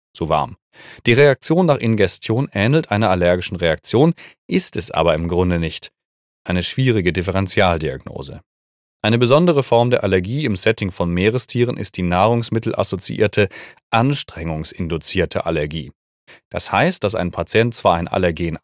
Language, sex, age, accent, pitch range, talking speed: German, male, 30-49, German, 90-115 Hz, 135 wpm